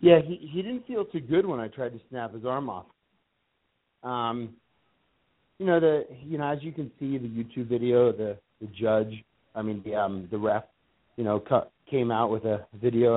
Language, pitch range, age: English, 115-145 Hz, 40-59